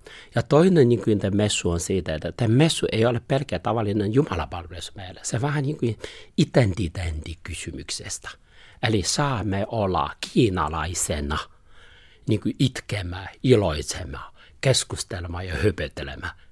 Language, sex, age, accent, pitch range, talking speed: Finnish, male, 60-79, native, 85-120 Hz, 115 wpm